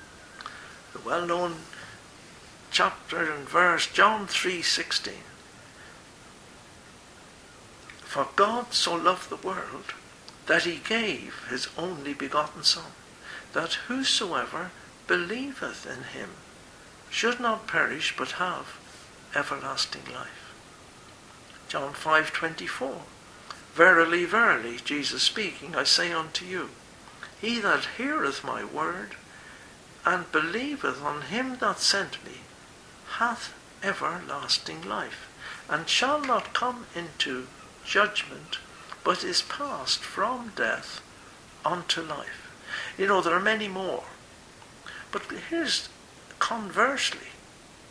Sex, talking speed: male, 100 wpm